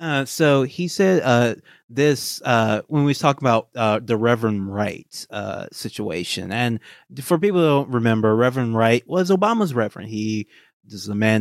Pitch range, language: 110-140 Hz, English